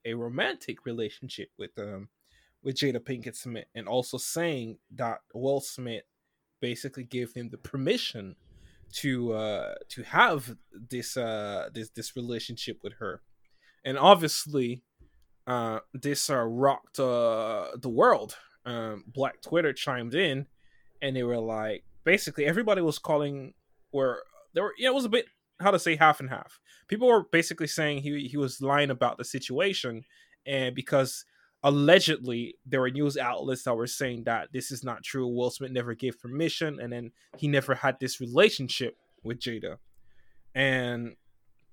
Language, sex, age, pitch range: English, male, 20-39, 120-155 Hz